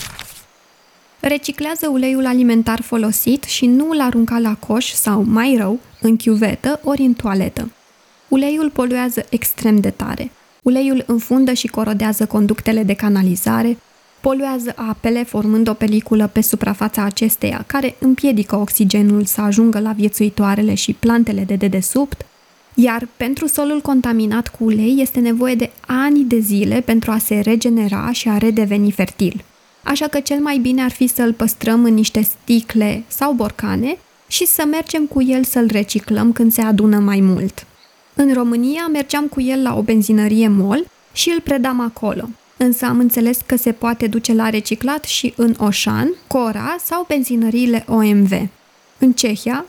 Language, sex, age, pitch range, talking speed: Romanian, female, 20-39, 215-260 Hz, 155 wpm